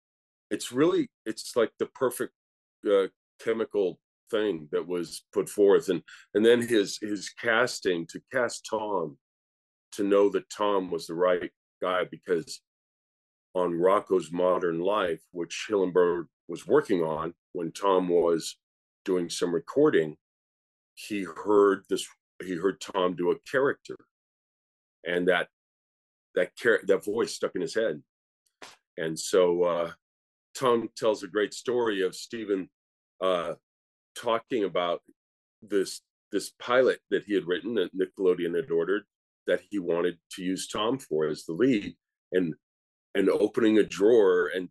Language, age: English, 40-59